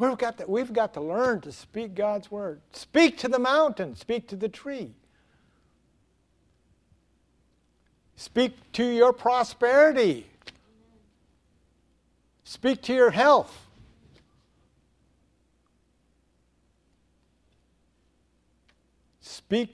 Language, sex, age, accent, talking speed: English, male, 60-79, American, 80 wpm